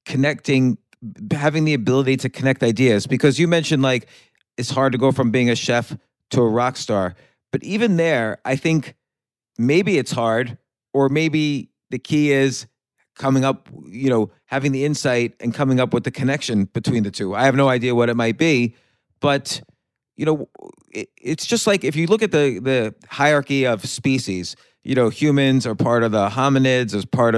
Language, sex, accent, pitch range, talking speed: English, male, American, 120-145 Hz, 190 wpm